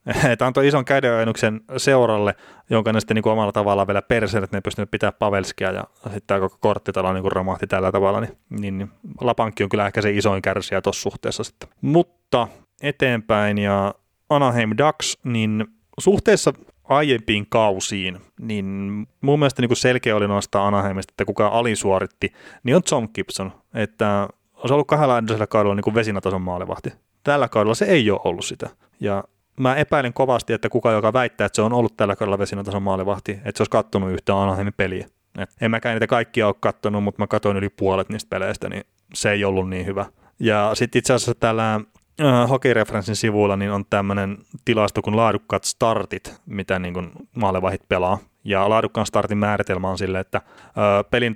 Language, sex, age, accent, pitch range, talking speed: Finnish, male, 30-49, native, 100-115 Hz, 170 wpm